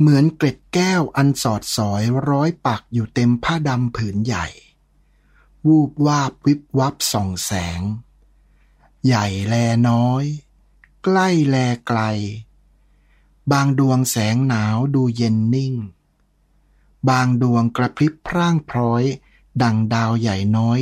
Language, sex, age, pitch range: Thai, male, 60-79, 110-140 Hz